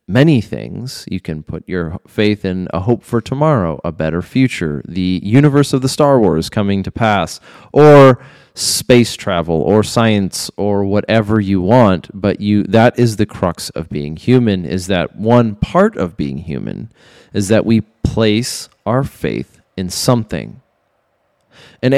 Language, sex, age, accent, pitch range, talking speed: English, male, 20-39, American, 100-125 Hz, 160 wpm